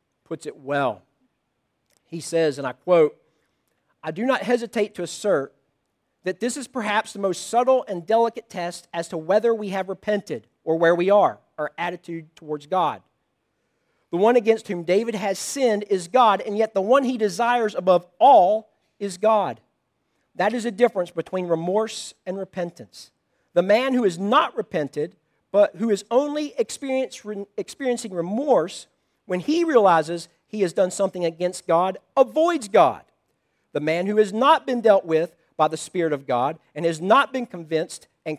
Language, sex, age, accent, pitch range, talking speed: English, male, 40-59, American, 170-240 Hz, 165 wpm